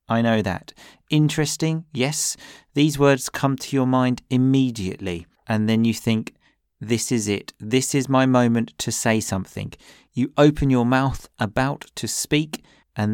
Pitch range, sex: 110-140 Hz, male